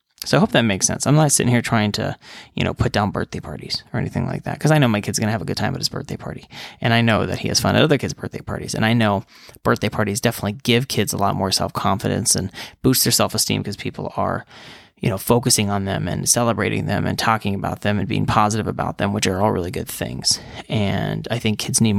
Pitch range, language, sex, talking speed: 105-125 Hz, English, male, 260 wpm